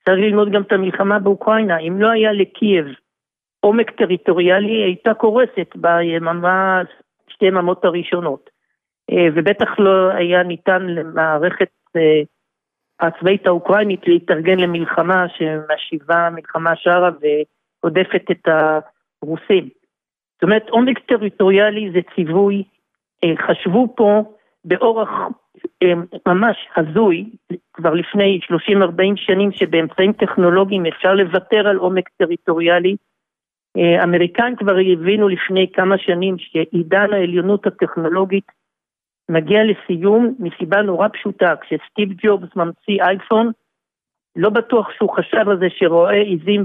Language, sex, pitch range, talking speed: Hebrew, male, 175-205 Hz, 105 wpm